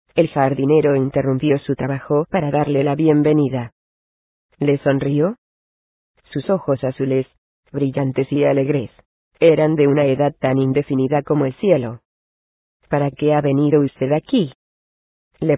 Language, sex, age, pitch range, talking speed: Spanish, female, 20-39, 135-150 Hz, 125 wpm